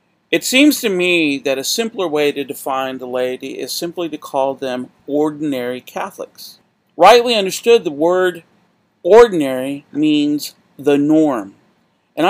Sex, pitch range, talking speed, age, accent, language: male, 140-185 Hz, 135 wpm, 50-69, American, English